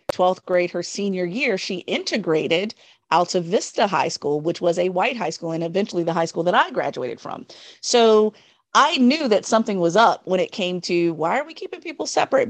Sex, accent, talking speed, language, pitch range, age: female, American, 205 wpm, English, 175-225 Hz, 40-59